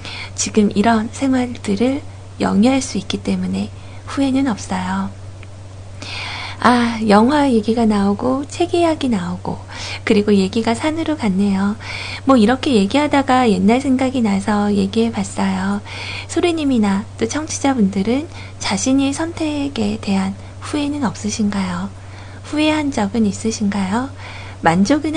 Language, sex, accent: Korean, female, native